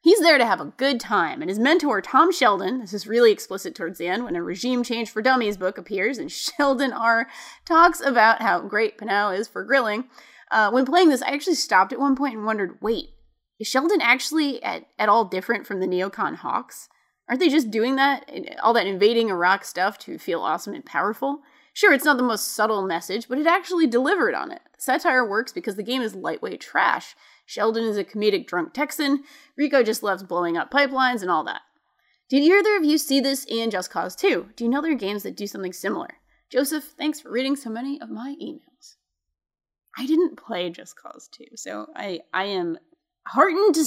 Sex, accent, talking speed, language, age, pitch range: female, American, 210 wpm, English, 20-39, 205-300 Hz